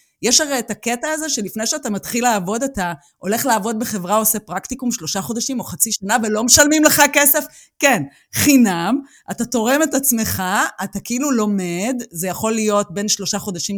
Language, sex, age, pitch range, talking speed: Hebrew, female, 30-49, 190-260 Hz, 170 wpm